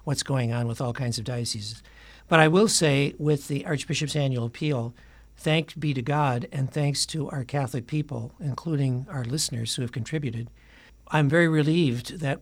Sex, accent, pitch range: male, American, 125-150 Hz